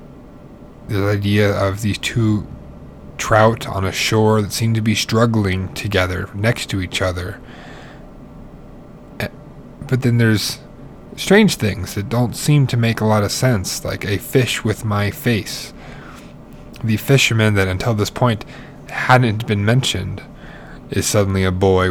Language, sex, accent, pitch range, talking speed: English, male, American, 95-120 Hz, 140 wpm